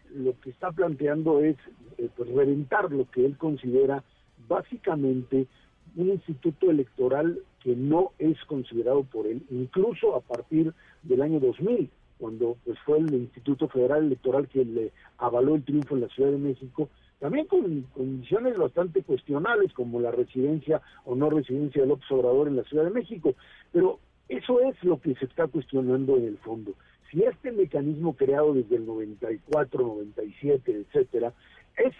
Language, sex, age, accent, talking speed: Spanish, male, 50-69, Mexican, 160 wpm